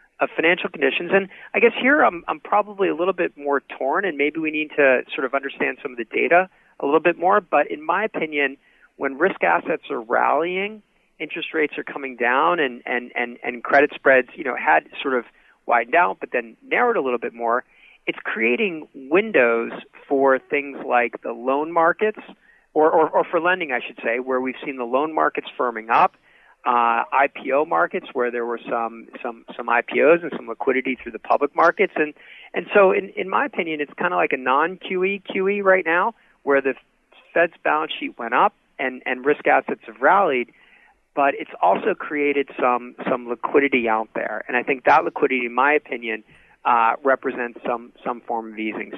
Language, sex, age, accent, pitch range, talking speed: English, male, 40-59, American, 120-170 Hz, 195 wpm